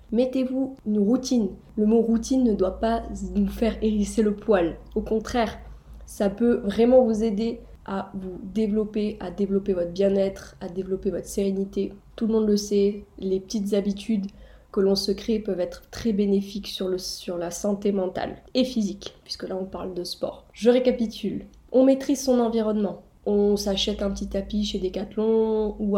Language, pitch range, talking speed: French, 195-220 Hz, 175 wpm